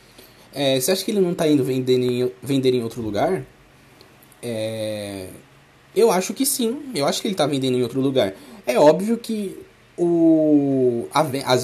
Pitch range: 130-210 Hz